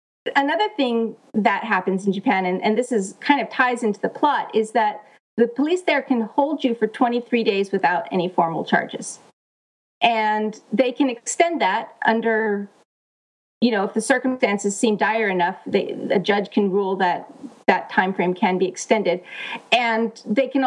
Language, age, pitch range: English, 40-59, 200-255 Hz